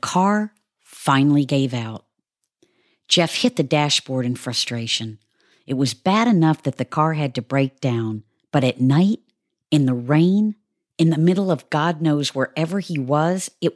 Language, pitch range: English, 120-165 Hz